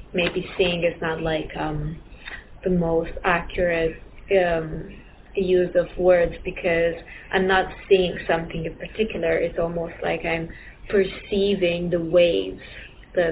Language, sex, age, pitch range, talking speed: English, female, 20-39, 170-195 Hz, 125 wpm